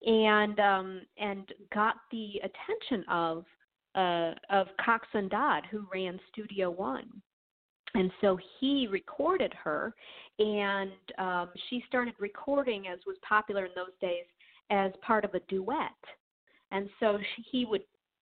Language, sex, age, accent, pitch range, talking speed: English, female, 40-59, American, 190-250 Hz, 135 wpm